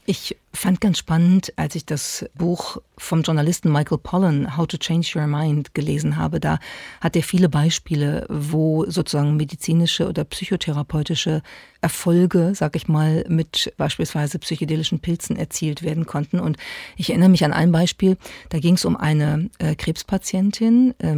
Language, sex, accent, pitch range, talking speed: German, female, German, 160-190 Hz, 150 wpm